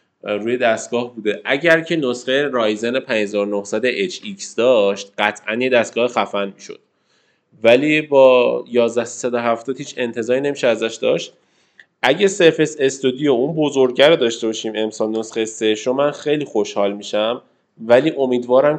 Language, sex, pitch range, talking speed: Persian, male, 105-130 Hz, 125 wpm